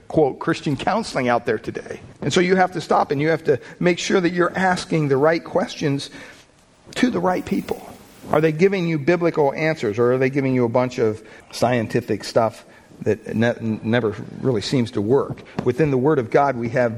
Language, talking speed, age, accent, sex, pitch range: English, 200 wpm, 50-69, American, male, 135-165 Hz